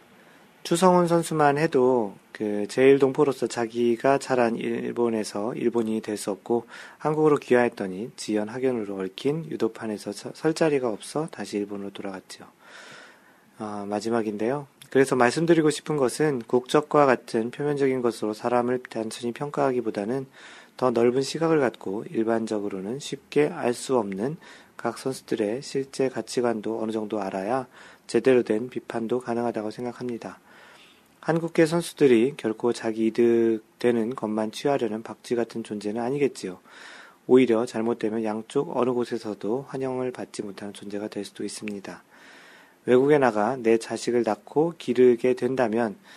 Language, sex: Korean, male